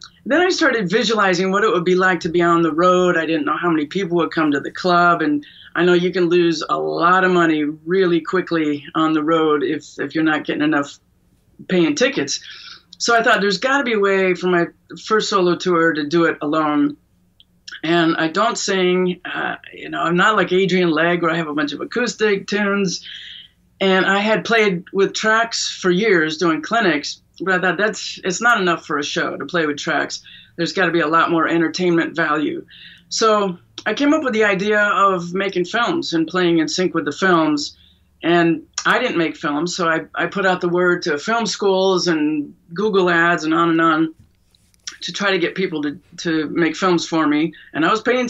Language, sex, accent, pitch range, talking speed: English, female, American, 160-195 Hz, 210 wpm